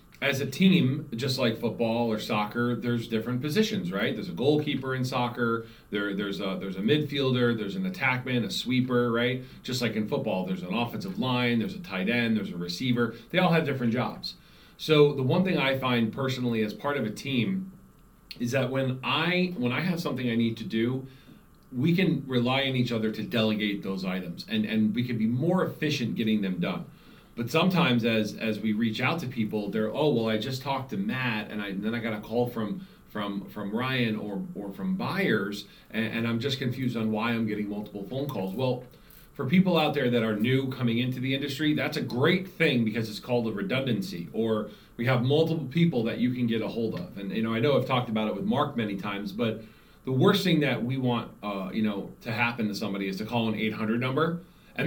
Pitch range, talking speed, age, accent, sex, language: 110-135 Hz, 225 wpm, 40-59, American, male, English